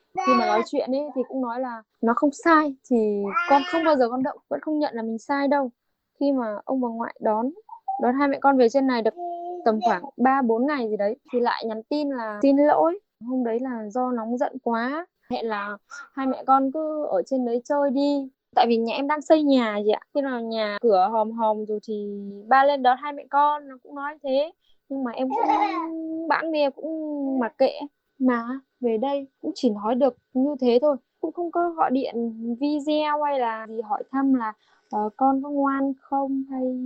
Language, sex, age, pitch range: Vietnamese, female, 10-29, 230-285 Hz